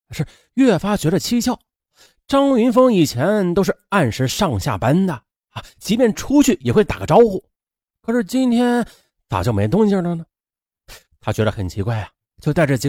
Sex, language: male, Chinese